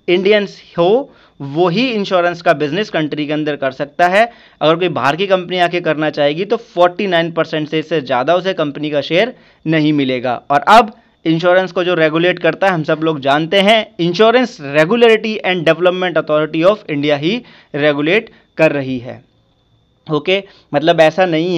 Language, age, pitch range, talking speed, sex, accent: Hindi, 30-49, 160-205 Hz, 165 wpm, male, native